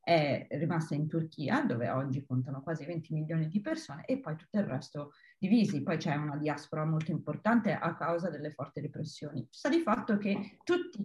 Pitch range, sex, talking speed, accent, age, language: 160-230 Hz, female, 185 wpm, native, 30-49, Italian